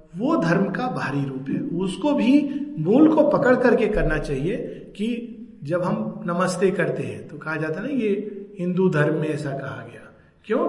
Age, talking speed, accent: 50-69, 185 wpm, native